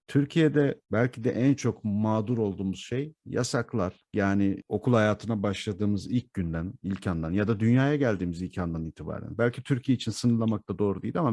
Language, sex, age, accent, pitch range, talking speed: Turkish, male, 50-69, native, 95-130 Hz, 170 wpm